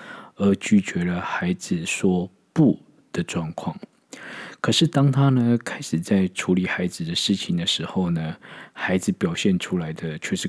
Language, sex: Chinese, male